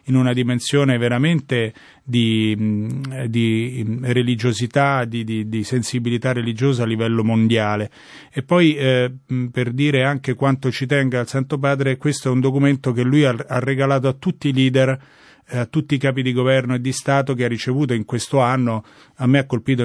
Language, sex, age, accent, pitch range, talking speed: Italian, male, 30-49, native, 115-135 Hz, 180 wpm